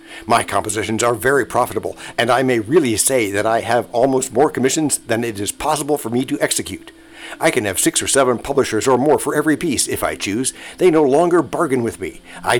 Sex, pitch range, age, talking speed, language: male, 115-165 Hz, 60-79, 220 wpm, English